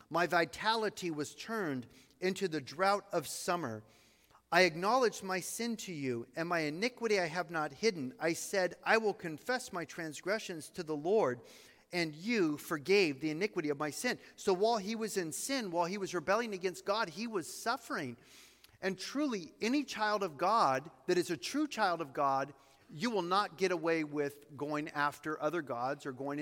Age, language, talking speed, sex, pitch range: 40-59, English, 180 wpm, male, 145-180 Hz